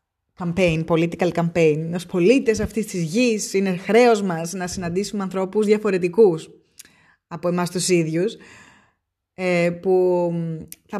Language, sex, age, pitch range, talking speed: Greek, female, 20-39, 160-195 Hz, 115 wpm